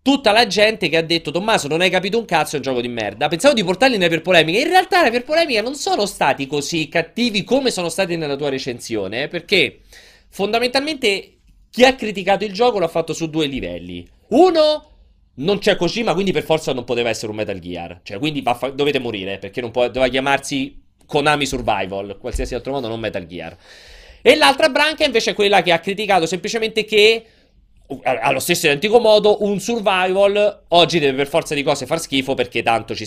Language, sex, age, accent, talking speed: Italian, male, 30-49, native, 200 wpm